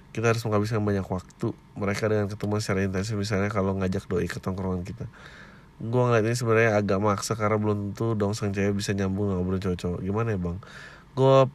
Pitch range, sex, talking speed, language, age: 100-130 Hz, male, 190 wpm, Indonesian, 30-49